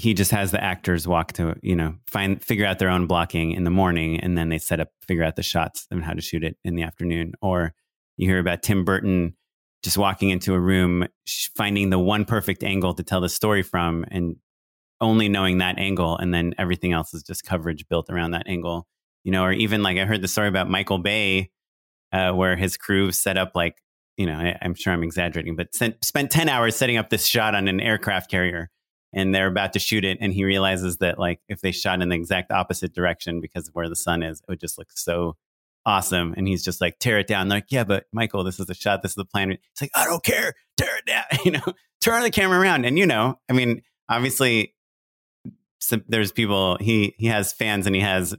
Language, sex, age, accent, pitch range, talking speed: English, male, 30-49, American, 85-105 Hz, 235 wpm